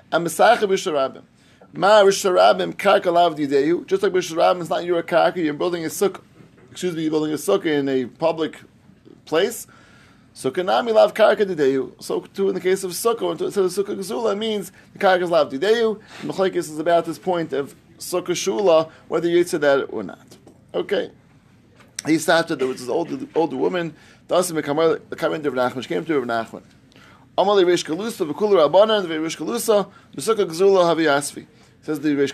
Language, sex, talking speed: English, male, 135 wpm